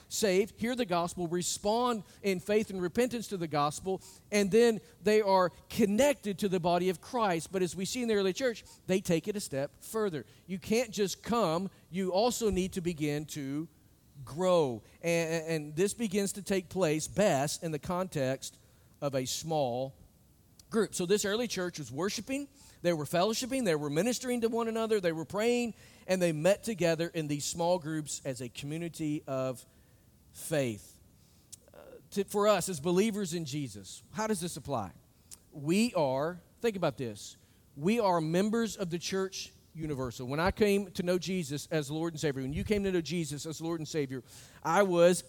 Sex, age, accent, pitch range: male, 50-69, American, 150-205 Hz